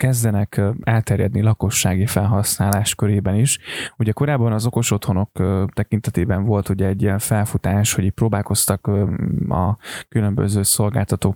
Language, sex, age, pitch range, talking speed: Hungarian, male, 20-39, 100-125 Hz, 115 wpm